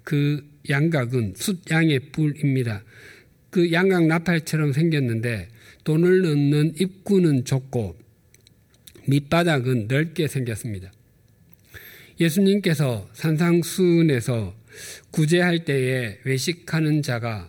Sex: male